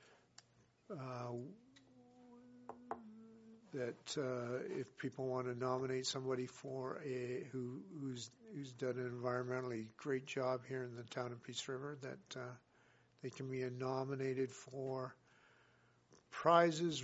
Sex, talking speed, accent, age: male, 120 wpm, American, 60-79